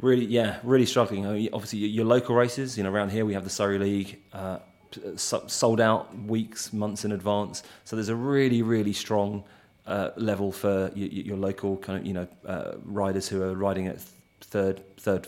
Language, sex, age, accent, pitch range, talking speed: English, male, 30-49, British, 95-105 Hz, 165 wpm